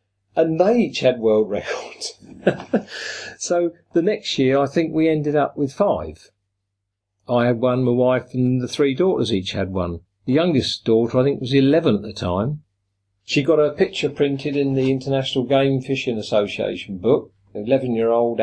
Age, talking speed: 50-69, 170 wpm